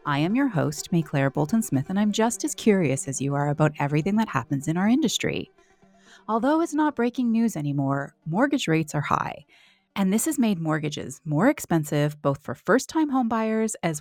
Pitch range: 150-235 Hz